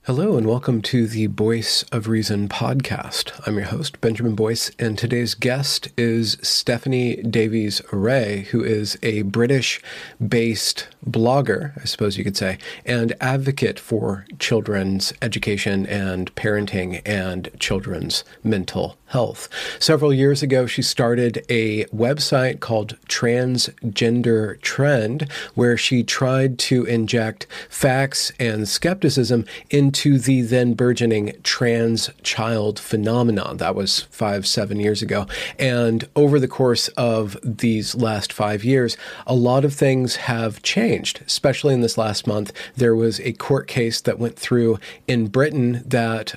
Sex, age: male, 40-59